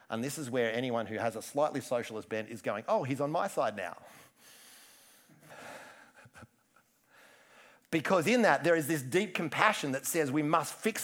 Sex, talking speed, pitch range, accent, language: male, 175 wpm, 140-180 Hz, Australian, English